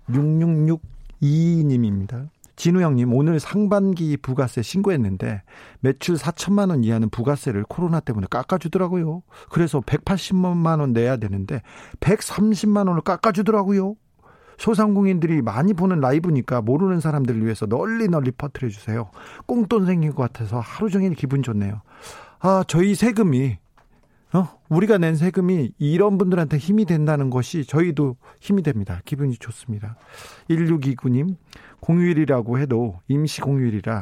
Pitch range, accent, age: 125-185 Hz, native, 40-59